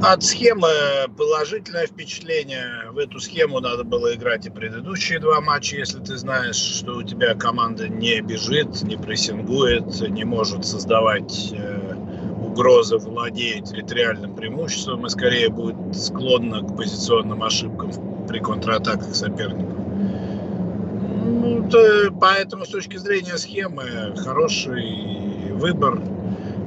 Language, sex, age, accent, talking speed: Russian, male, 50-69, native, 110 wpm